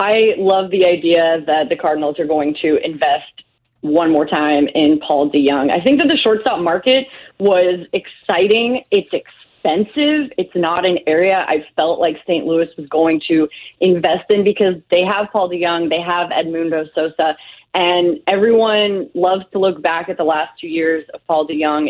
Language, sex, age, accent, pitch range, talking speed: English, female, 20-39, American, 170-230 Hz, 175 wpm